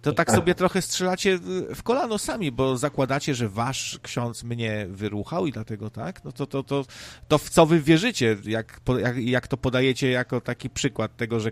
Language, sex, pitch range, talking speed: Polish, male, 110-155 Hz, 200 wpm